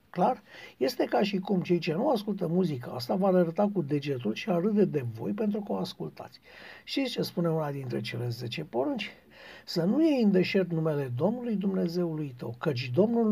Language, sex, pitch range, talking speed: Romanian, male, 170-220 Hz, 200 wpm